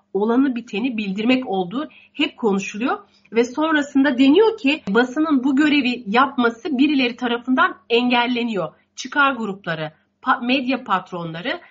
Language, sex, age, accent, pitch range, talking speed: Turkish, female, 40-59, native, 220-295 Hz, 110 wpm